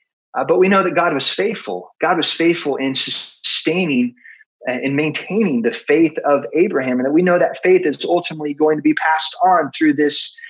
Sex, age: male, 30-49